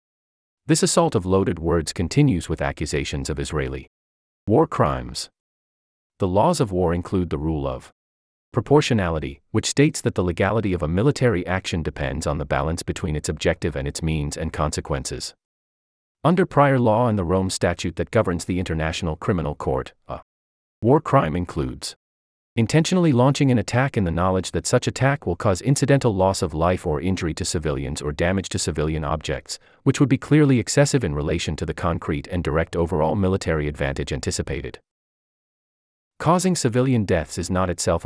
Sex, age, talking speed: male, 40-59, 165 wpm